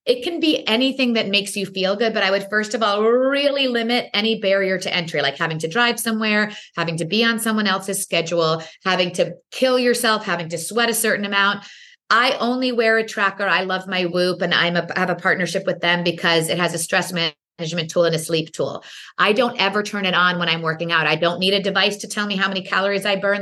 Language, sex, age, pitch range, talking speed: English, female, 30-49, 180-230 Hz, 245 wpm